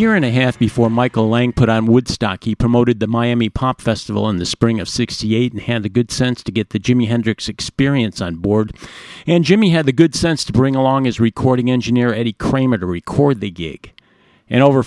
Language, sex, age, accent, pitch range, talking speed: English, male, 50-69, American, 110-135 Hz, 220 wpm